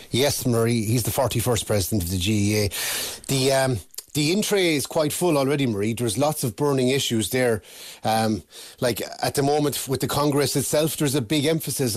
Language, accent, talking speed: English, Irish, 185 wpm